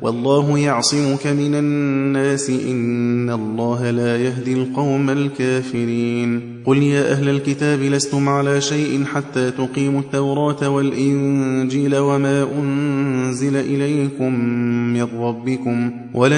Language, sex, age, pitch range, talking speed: Persian, male, 20-39, 130-145 Hz, 100 wpm